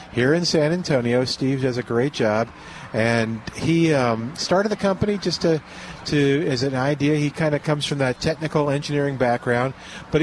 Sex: male